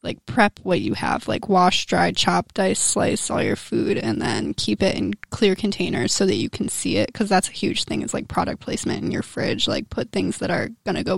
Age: 20-39